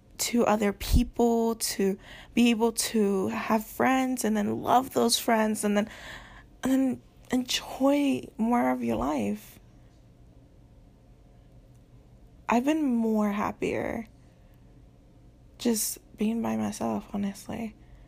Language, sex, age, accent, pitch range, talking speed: English, female, 20-39, American, 195-235 Hz, 105 wpm